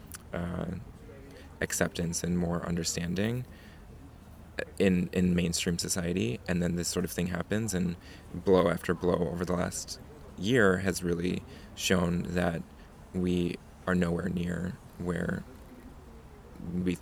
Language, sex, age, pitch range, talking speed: English, male, 20-39, 85-90 Hz, 120 wpm